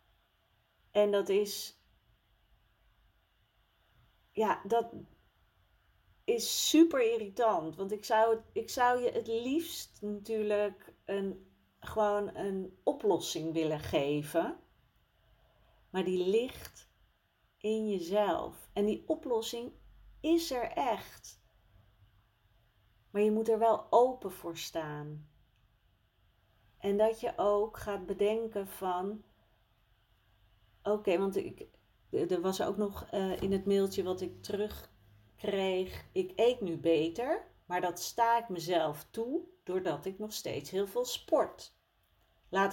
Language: Dutch